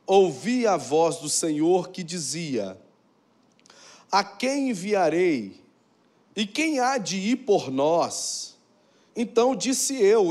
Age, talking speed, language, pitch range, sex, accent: 40-59, 115 wpm, Portuguese, 150-190 Hz, male, Brazilian